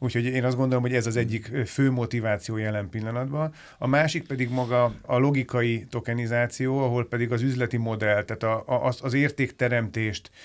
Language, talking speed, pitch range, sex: Hungarian, 155 wpm, 110-130 Hz, male